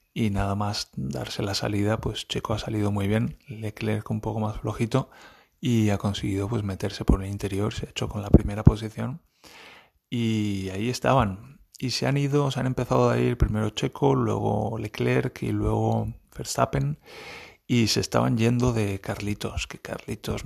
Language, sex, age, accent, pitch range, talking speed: Spanish, male, 30-49, Spanish, 105-115 Hz, 175 wpm